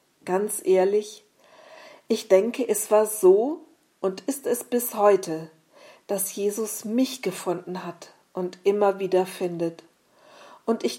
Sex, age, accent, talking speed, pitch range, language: female, 40-59, German, 125 wpm, 185-235 Hz, German